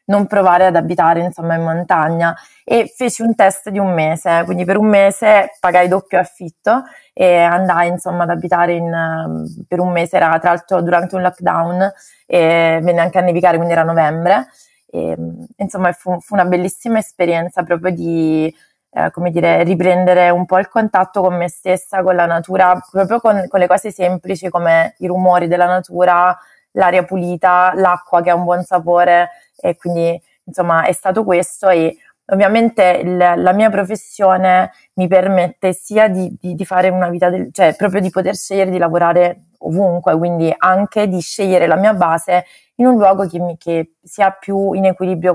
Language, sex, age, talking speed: Italian, female, 20-39, 165 wpm